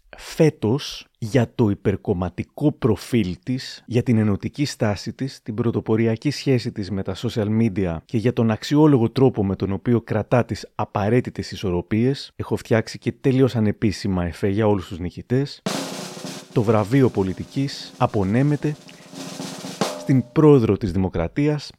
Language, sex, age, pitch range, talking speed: Greek, male, 30-49, 100-130 Hz, 135 wpm